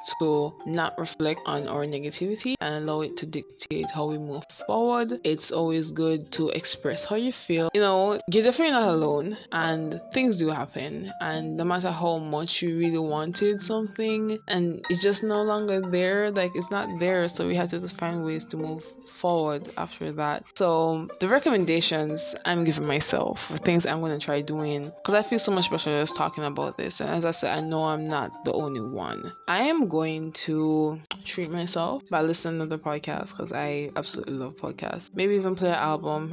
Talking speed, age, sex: 195 wpm, 20-39, female